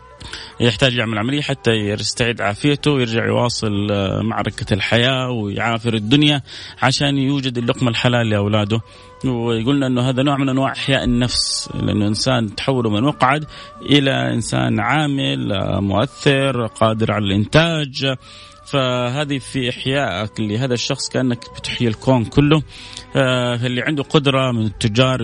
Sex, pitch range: male, 115-140 Hz